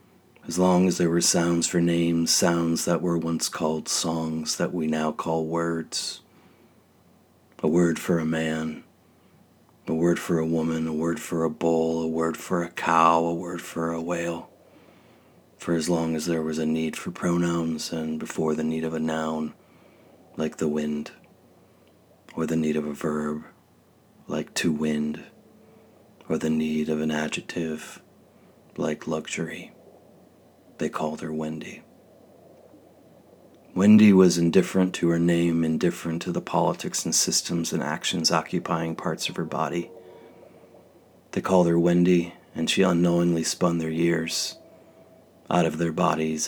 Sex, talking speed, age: male, 150 wpm, 30-49